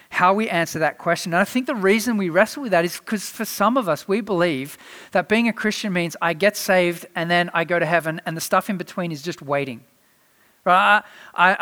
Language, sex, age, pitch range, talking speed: English, male, 40-59, 160-205 Hz, 235 wpm